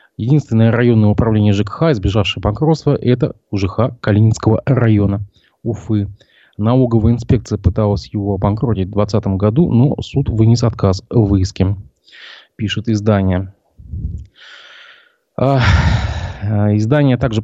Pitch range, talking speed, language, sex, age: 100-115 Hz, 100 wpm, Russian, male, 20-39